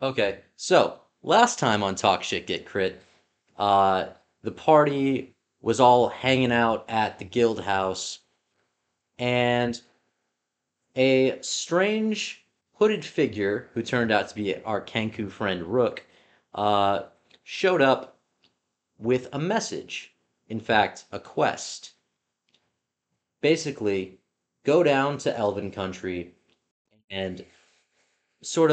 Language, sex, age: English, male, 30-49